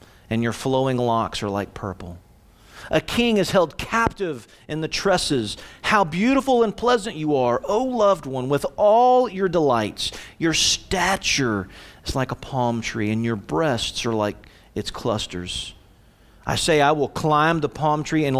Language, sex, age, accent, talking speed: English, male, 40-59, American, 165 wpm